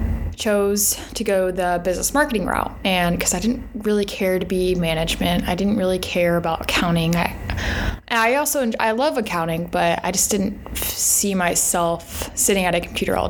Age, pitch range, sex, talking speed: 20-39, 170-200 Hz, female, 180 wpm